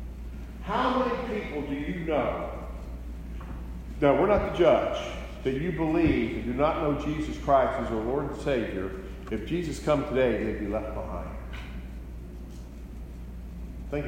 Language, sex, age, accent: English, male, 50-69, American